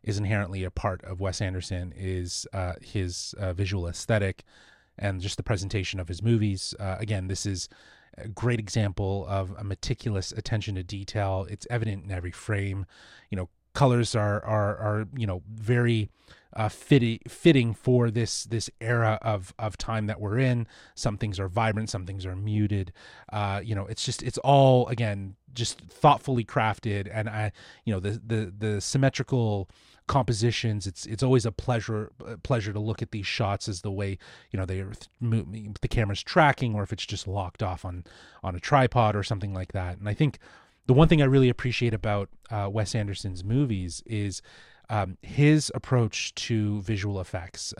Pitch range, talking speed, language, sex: 100-120 Hz, 185 wpm, English, male